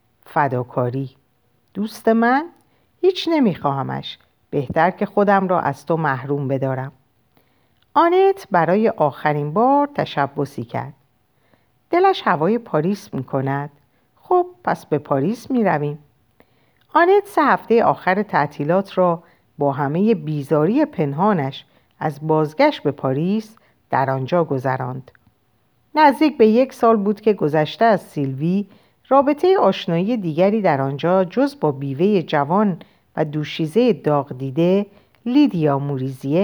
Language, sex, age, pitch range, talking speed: Persian, female, 50-69, 140-225 Hz, 115 wpm